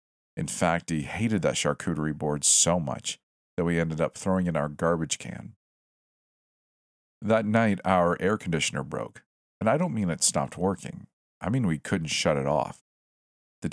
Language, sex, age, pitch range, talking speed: English, male, 50-69, 75-95 Hz, 170 wpm